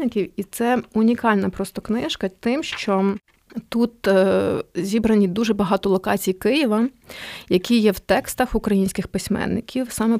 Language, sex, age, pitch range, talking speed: Ukrainian, female, 20-39, 195-225 Hz, 120 wpm